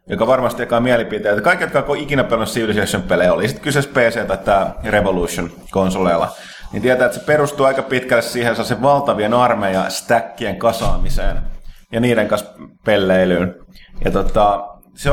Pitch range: 95-120 Hz